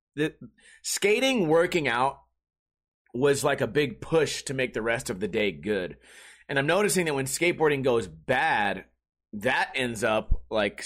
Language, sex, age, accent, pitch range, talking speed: English, male, 30-49, American, 130-180 Hz, 160 wpm